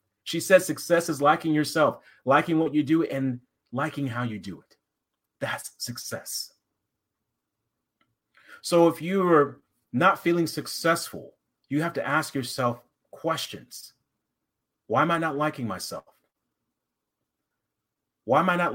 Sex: male